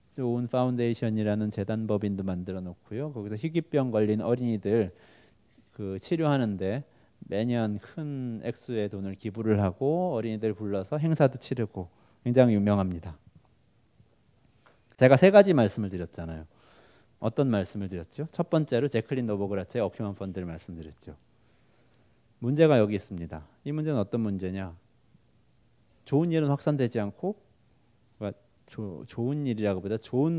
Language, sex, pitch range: Korean, male, 105-145 Hz